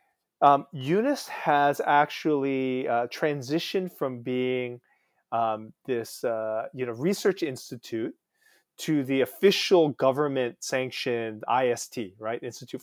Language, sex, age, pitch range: Korean, male, 30-49, 120-165 Hz